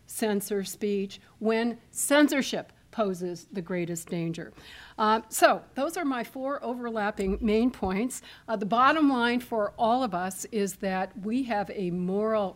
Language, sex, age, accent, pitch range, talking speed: English, female, 60-79, American, 180-225 Hz, 150 wpm